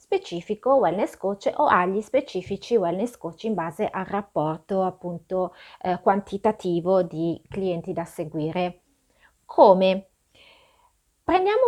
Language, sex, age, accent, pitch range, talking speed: Italian, female, 30-49, native, 180-255 Hz, 110 wpm